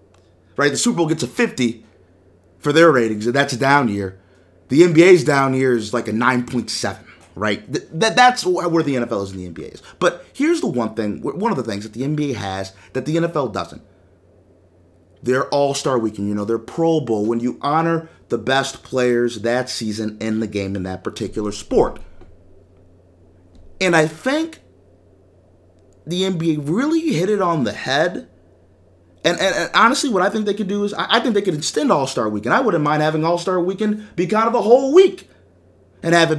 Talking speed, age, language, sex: 205 wpm, 30-49, English, male